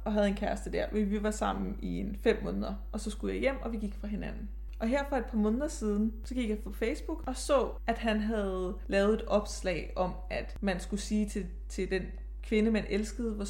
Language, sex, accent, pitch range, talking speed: Danish, female, native, 200-230 Hz, 235 wpm